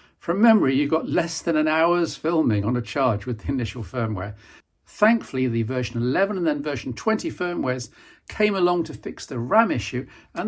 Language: English